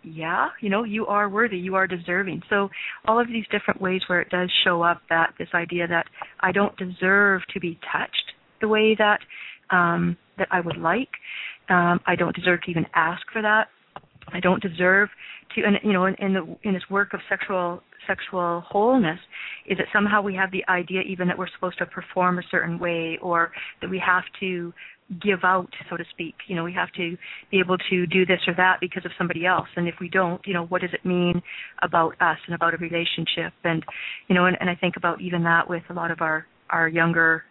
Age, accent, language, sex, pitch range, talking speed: 40-59, American, English, female, 170-190 Hz, 220 wpm